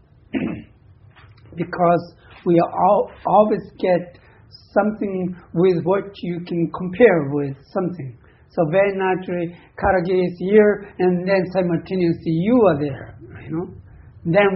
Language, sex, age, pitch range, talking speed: English, male, 60-79, 130-185 Hz, 120 wpm